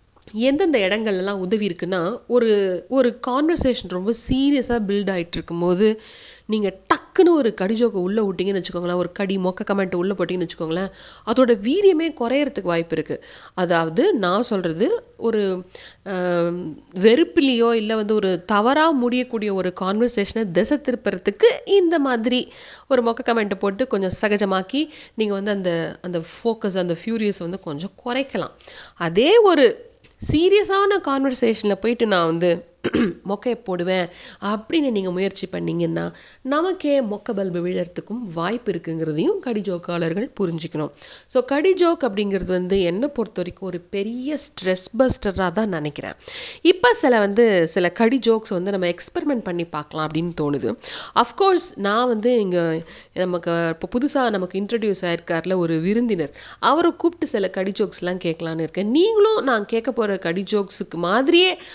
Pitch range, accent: 180-255 Hz, native